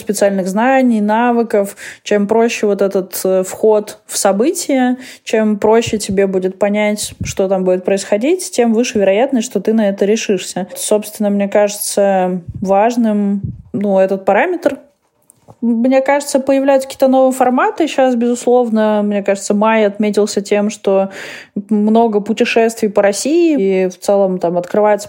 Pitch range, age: 195-225 Hz, 20-39